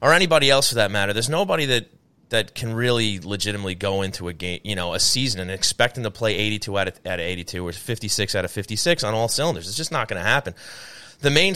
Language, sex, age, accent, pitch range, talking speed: English, male, 30-49, American, 100-135 Hz, 250 wpm